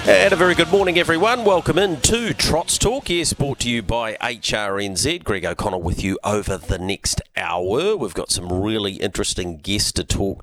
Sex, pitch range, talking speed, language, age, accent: male, 85-105 Hz, 190 wpm, English, 40-59, Australian